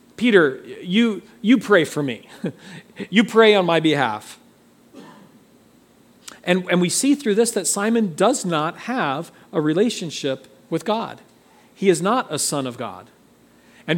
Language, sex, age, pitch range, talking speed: English, male, 40-59, 145-200 Hz, 145 wpm